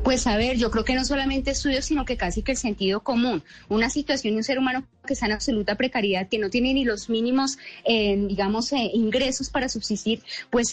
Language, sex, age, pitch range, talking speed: Spanish, female, 20-39, 215-260 Hz, 225 wpm